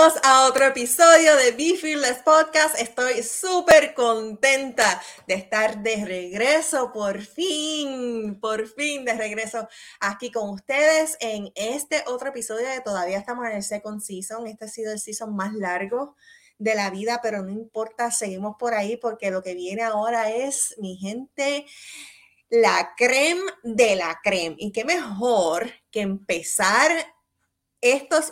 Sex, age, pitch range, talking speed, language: female, 20-39, 200-275 Hz, 150 wpm, English